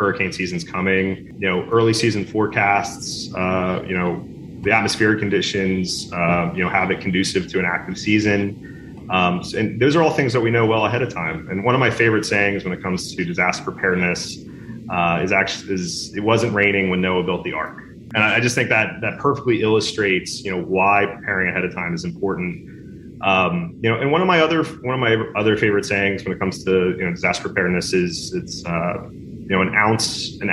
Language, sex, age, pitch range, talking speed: English, male, 30-49, 90-115 Hz, 210 wpm